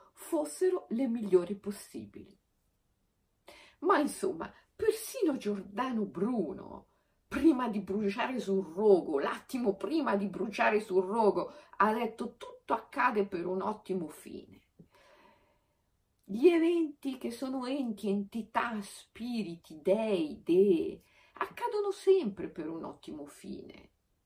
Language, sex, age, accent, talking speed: Italian, female, 50-69, native, 105 wpm